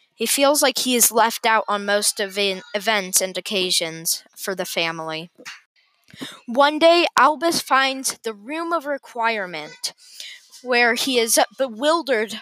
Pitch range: 200-265 Hz